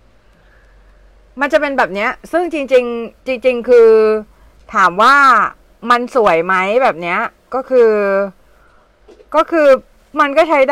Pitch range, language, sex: 185-240 Hz, Thai, female